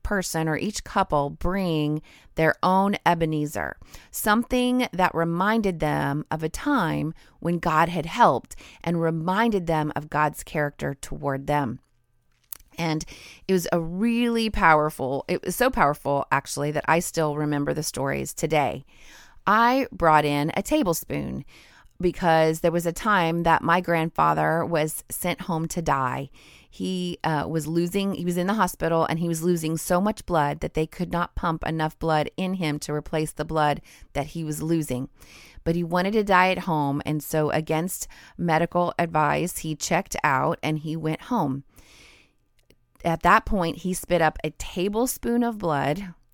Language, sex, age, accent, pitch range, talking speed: English, female, 30-49, American, 150-180 Hz, 160 wpm